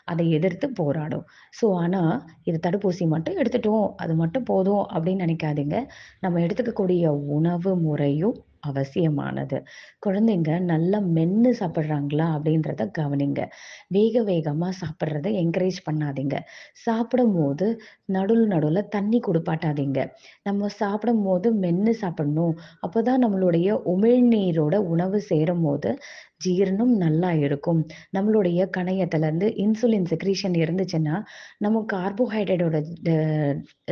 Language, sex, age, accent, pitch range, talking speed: Tamil, female, 30-49, native, 160-210 Hz, 100 wpm